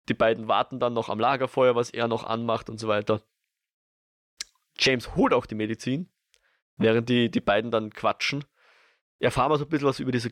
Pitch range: 110-135 Hz